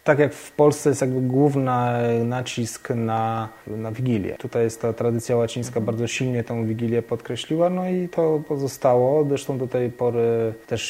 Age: 20-39